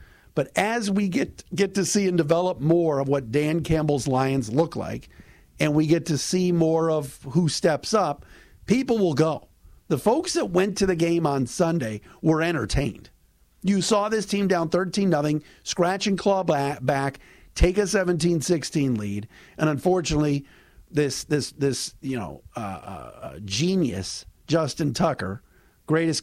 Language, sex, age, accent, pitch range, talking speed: English, male, 50-69, American, 120-170 Hz, 160 wpm